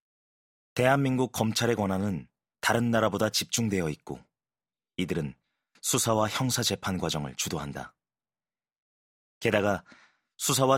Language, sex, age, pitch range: Korean, male, 30-49, 90-120 Hz